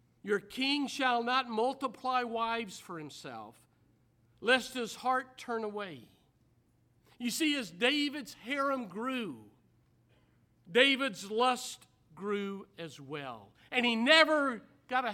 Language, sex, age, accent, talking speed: English, male, 50-69, American, 115 wpm